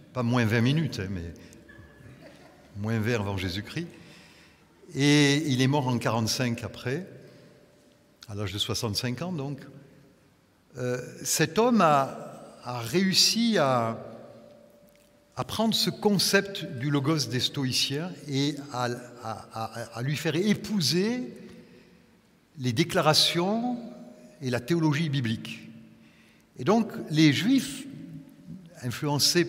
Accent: French